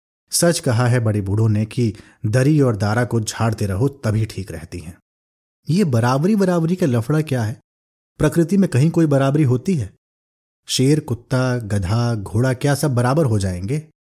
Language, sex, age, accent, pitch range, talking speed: Hindi, male, 30-49, native, 105-140 Hz, 170 wpm